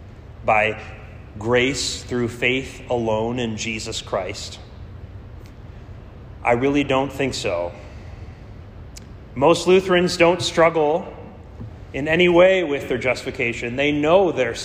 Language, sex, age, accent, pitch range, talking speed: English, male, 30-49, American, 105-155 Hz, 105 wpm